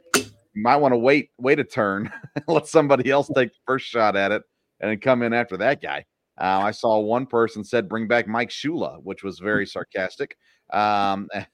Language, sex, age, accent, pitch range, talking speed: English, male, 30-49, American, 100-120 Hz, 200 wpm